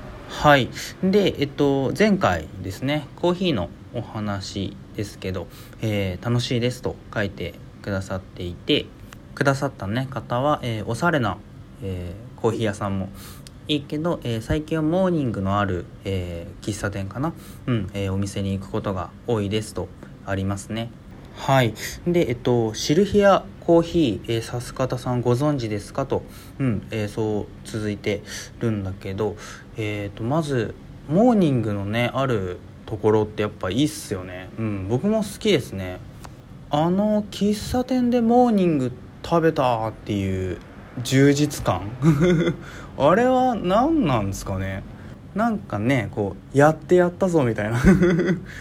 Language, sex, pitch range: Japanese, male, 100-150 Hz